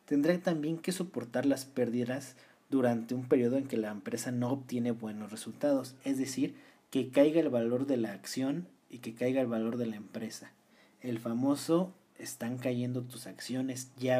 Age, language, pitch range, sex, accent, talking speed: 40-59, Spanish, 115-155 Hz, male, Mexican, 175 wpm